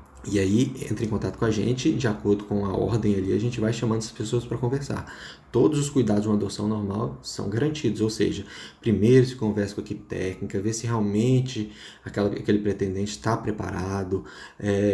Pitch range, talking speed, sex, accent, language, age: 100-115 Hz, 195 wpm, male, Brazilian, Portuguese, 20-39